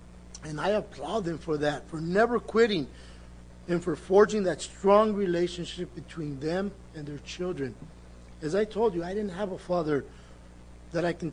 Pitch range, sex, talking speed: 155-210 Hz, male, 170 wpm